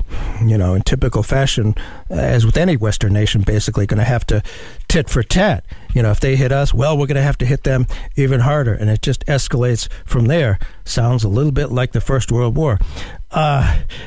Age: 60-79